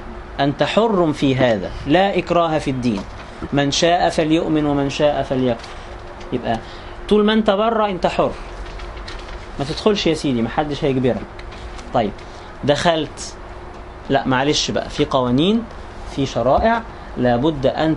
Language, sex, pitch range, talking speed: English, male, 130-170 Hz, 130 wpm